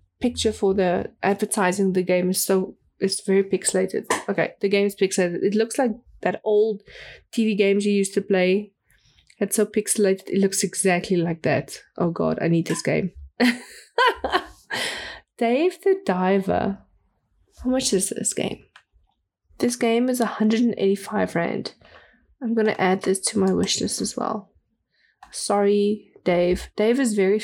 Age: 20-39